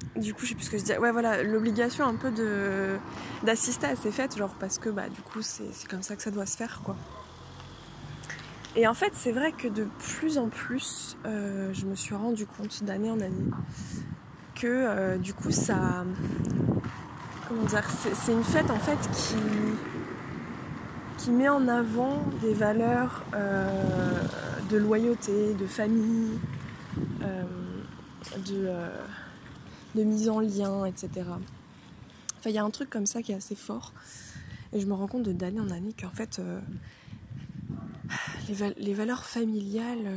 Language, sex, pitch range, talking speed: French, female, 190-225 Hz, 175 wpm